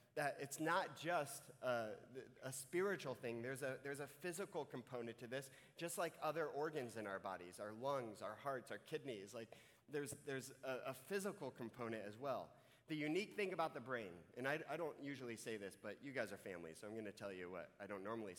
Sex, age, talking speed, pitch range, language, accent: male, 30-49, 215 wpm, 120-175 Hz, English, American